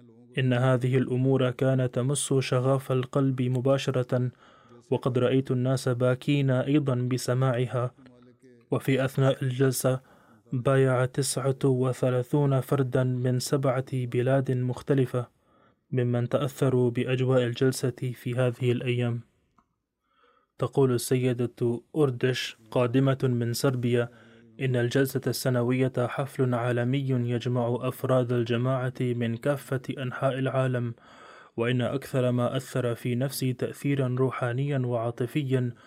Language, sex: Arabic, male